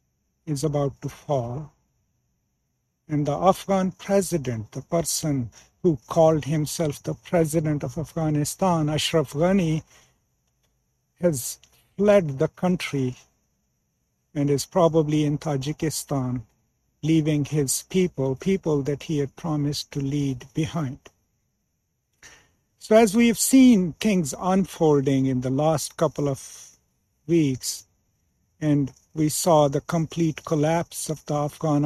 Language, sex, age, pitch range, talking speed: English, male, 50-69, 140-165 Hz, 115 wpm